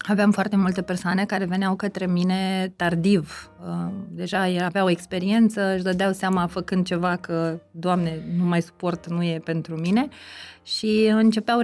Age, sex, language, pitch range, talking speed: 20-39, female, Romanian, 175-225 Hz, 145 wpm